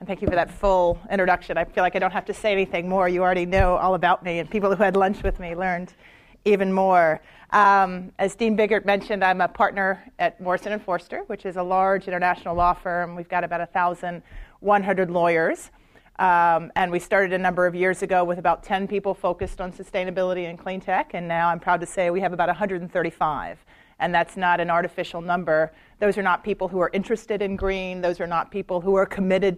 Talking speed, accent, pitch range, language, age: 220 wpm, American, 175-195 Hz, English, 30-49